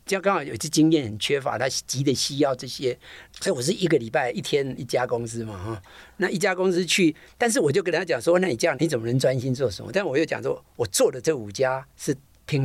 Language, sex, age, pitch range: Chinese, male, 50-69, 125-185 Hz